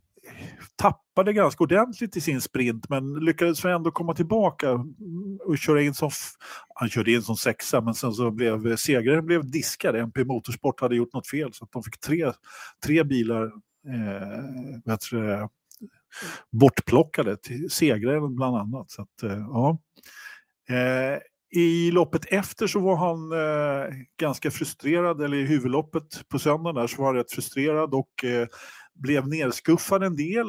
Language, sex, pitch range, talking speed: Swedish, male, 115-155 Hz, 155 wpm